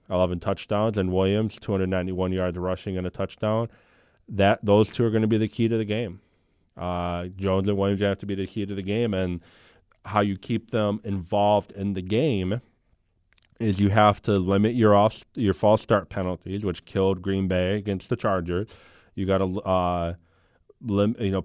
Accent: American